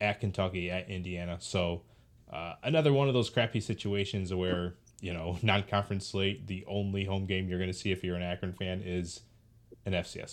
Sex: male